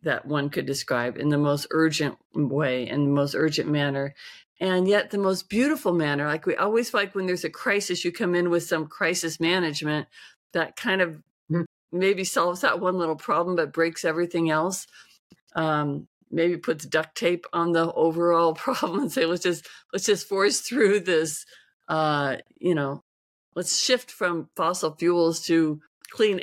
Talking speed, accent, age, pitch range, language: 175 wpm, American, 50-69, 150-175 Hz, English